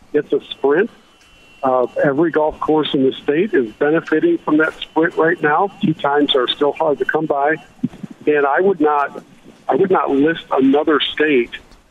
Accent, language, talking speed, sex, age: American, English, 175 wpm, male, 50-69